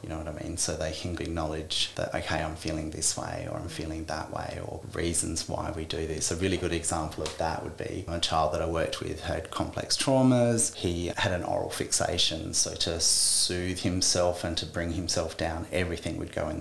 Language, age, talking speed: English, 30-49, 220 wpm